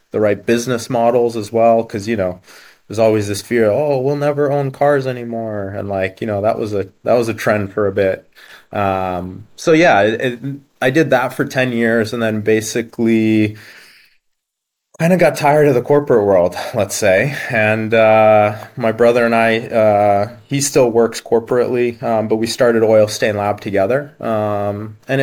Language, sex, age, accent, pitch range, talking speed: English, male, 20-39, American, 105-125 Hz, 180 wpm